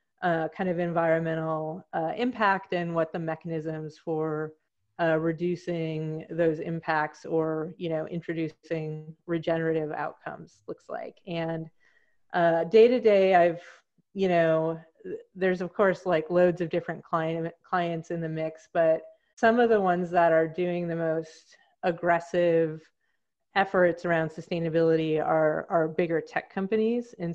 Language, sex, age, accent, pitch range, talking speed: English, female, 30-49, American, 160-175 Hz, 135 wpm